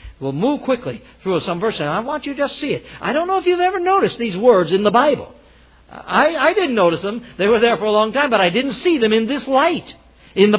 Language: English